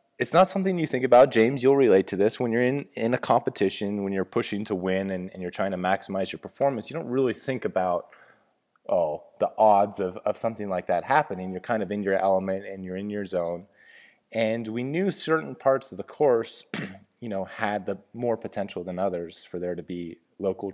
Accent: American